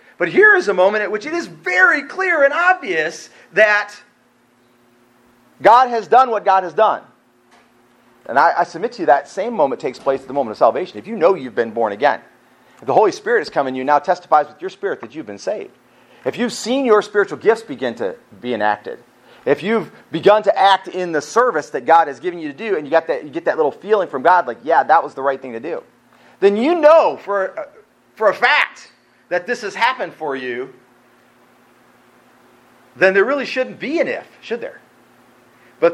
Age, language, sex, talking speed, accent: 40-59, English, male, 215 wpm, American